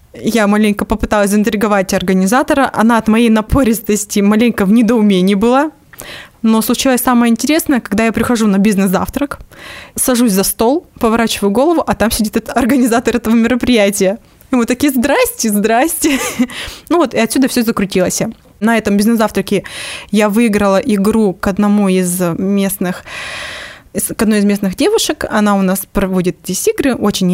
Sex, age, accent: female, 20-39, native